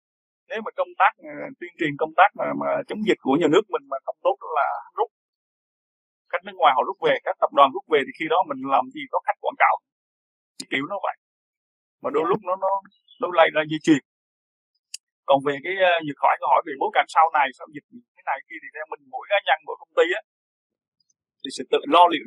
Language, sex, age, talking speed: Vietnamese, male, 20-39, 235 wpm